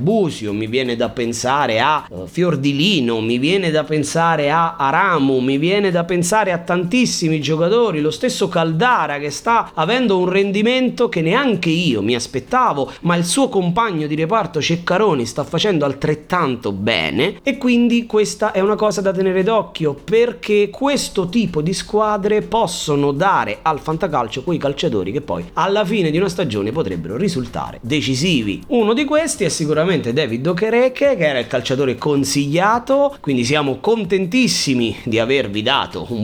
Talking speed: 155 wpm